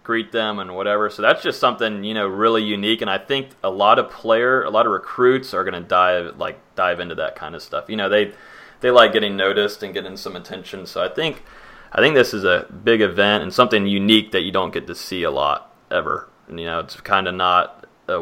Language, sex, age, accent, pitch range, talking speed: English, male, 30-49, American, 100-115 Hz, 245 wpm